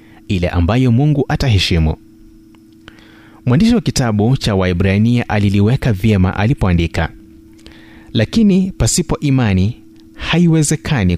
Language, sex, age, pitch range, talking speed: Swahili, male, 30-49, 95-125 Hz, 85 wpm